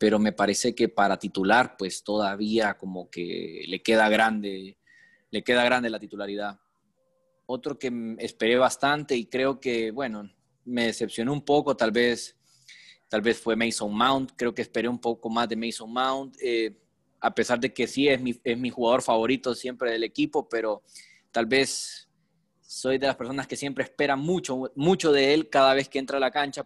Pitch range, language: 110-135 Hz, Spanish